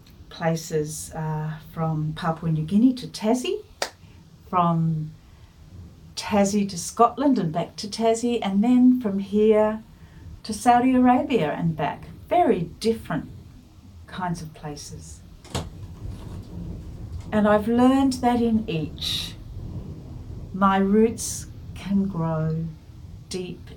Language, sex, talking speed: English, female, 105 wpm